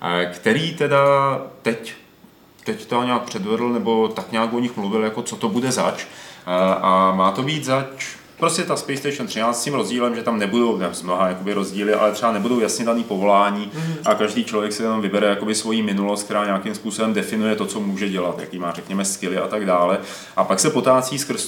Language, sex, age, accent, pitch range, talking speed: Czech, male, 30-49, native, 100-130 Hz, 200 wpm